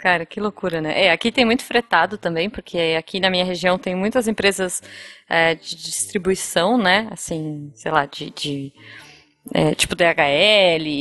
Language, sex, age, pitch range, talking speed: Portuguese, female, 20-39, 165-215 Hz, 165 wpm